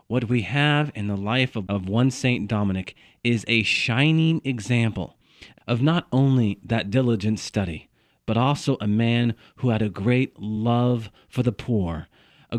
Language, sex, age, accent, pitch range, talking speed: English, male, 40-59, American, 100-125 Hz, 160 wpm